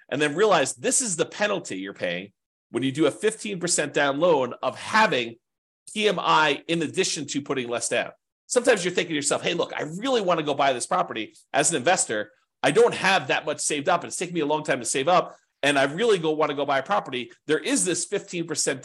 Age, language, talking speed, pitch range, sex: 40-59, English, 230 wpm, 130-180 Hz, male